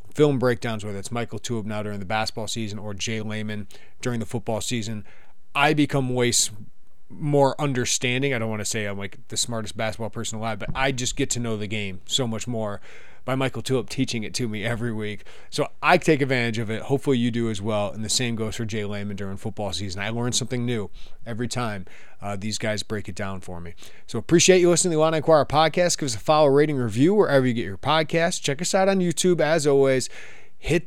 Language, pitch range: English, 110-135 Hz